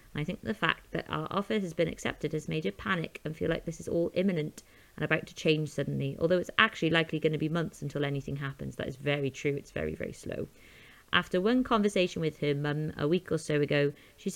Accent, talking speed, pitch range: British, 240 wpm, 150-195 Hz